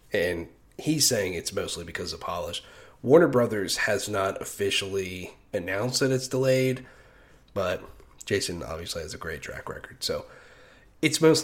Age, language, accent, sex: 30-49, English, American, male